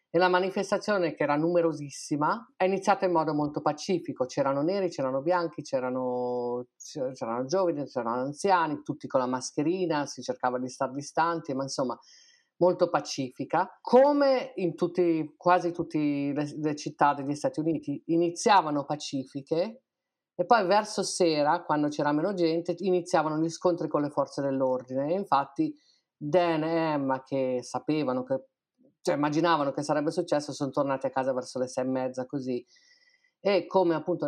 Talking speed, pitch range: 155 wpm, 140-175 Hz